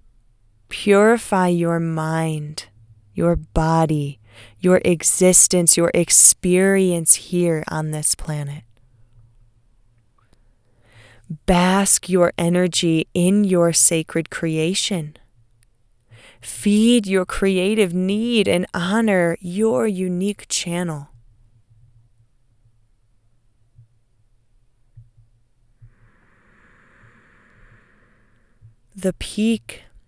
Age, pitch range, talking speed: 20-39, 115-175 Hz, 60 wpm